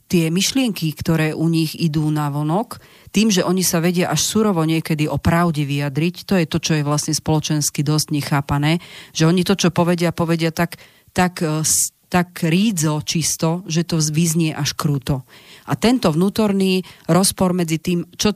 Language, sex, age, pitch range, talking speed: Slovak, female, 40-59, 150-175 Hz, 165 wpm